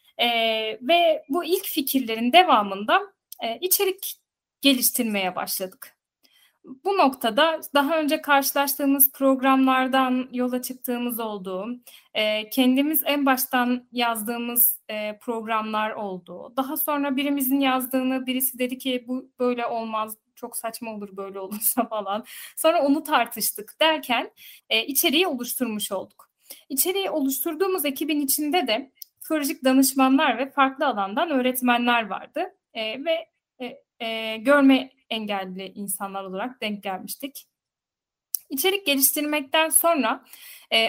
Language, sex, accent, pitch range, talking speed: Turkish, female, native, 225-290 Hz, 115 wpm